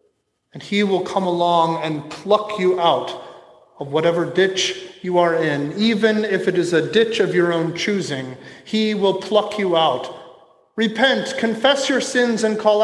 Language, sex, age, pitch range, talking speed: English, male, 30-49, 175-225 Hz, 170 wpm